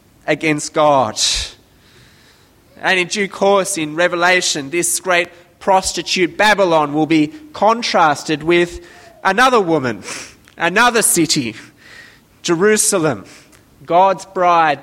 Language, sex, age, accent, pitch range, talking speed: English, male, 20-39, Australian, 155-205 Hz, 95 wpm